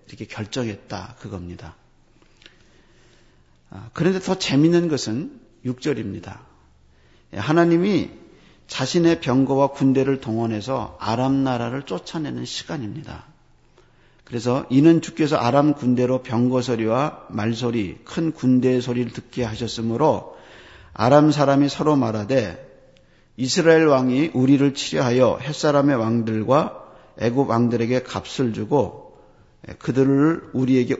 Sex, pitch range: male, 110-140 Hz